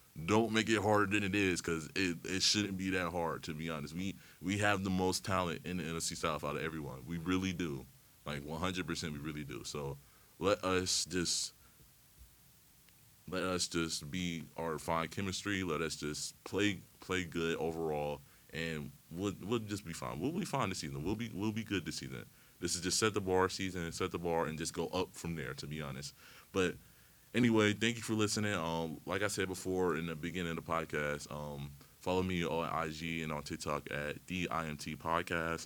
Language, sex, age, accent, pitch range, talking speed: English, male, 30-49, American, 80-95 Hz, 205 wpm